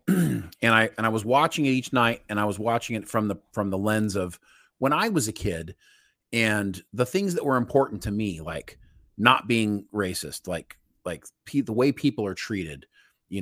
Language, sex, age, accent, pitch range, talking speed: English, male, 30-49, American, 100-145 Hz, 205 wpm